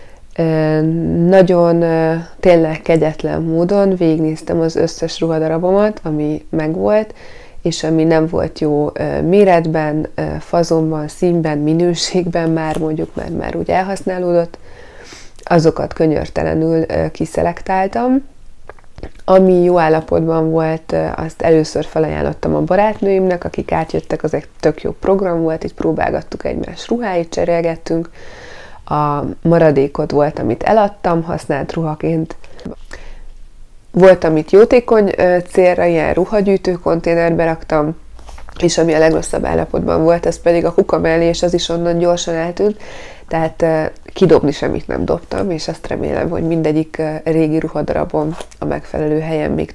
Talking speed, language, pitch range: 120 wpm, Hungarian, 155-175 Hz